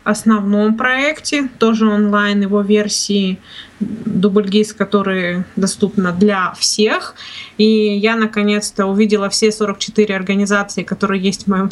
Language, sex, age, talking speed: Russian, female, 20-39, 115 wpm